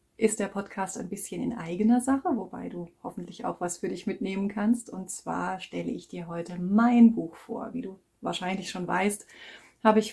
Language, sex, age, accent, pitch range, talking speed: German, female, 30-49, German, 185-235 Hz, 195 wpm